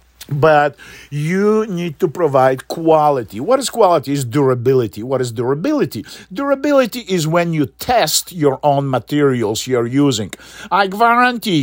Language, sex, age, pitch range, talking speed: English, male, 50-69, 140-185 Hz, 135 wpm